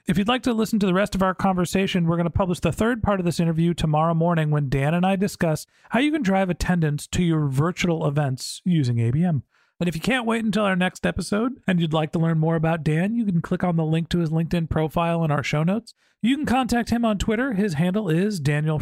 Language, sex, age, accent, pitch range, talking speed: English, male, 40-59, American, 150-195 Hz, 255 wpm